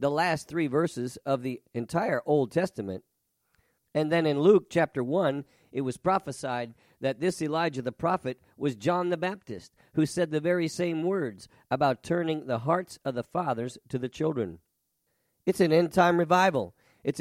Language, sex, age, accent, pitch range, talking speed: English, male, 50-69, American, 130-170 Hz, 170 wpm